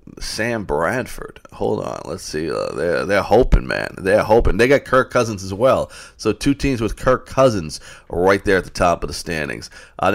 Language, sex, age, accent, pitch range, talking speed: English, male, 40-59, American, 85-105 Hz, 200 wpm